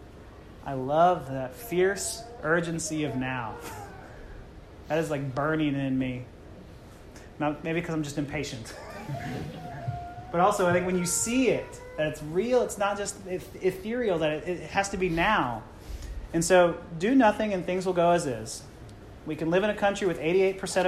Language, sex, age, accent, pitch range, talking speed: English, male, 30-49, American, 145-200 Hz, 165 wpm